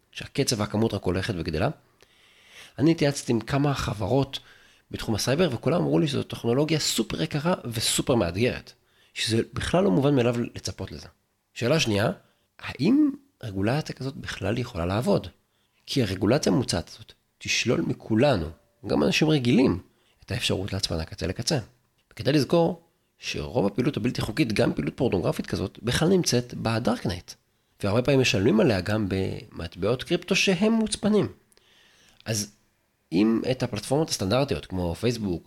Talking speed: 130 wpm